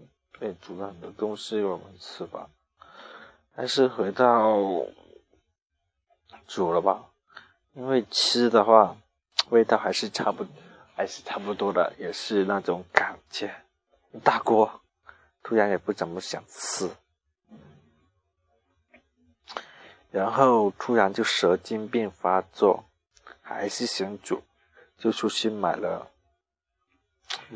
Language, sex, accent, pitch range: Chinese, male, native, 80-110 Hz